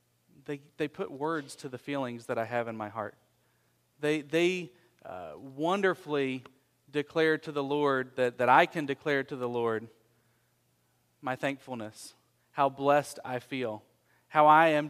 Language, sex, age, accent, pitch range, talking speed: English, male, 40-59, American, 115-150 Hz, 155 wpm